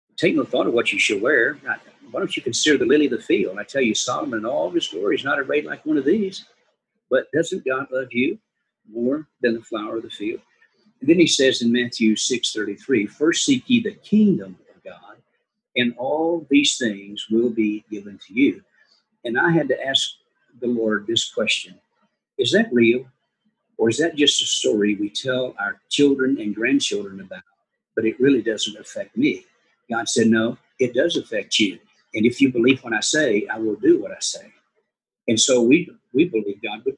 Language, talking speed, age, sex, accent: English, 205 wpm, 50-69, male, American